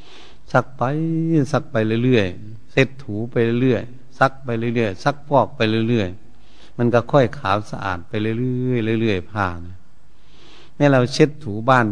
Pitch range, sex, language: 100-135 Hz, male, Thai